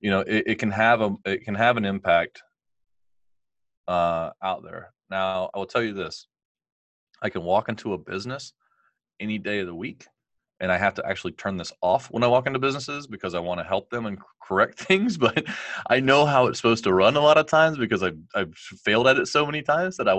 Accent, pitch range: American, 85-105 Hz